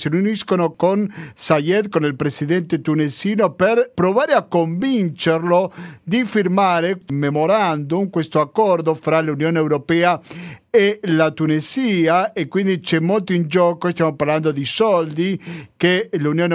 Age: 50-69